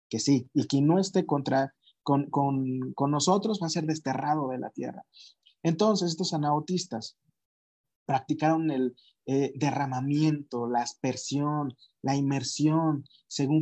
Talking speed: 130 wpm